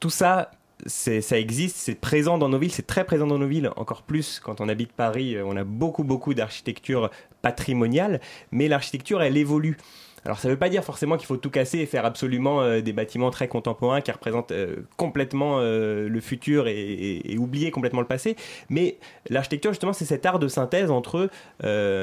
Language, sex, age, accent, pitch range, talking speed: French, male, 30-49, French, 110-150 Hz, 205 wpm